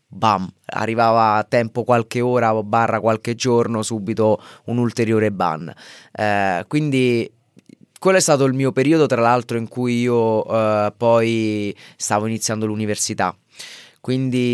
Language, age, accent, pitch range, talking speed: Italian, 20-39, native, 110-130 Hz, 130 wpm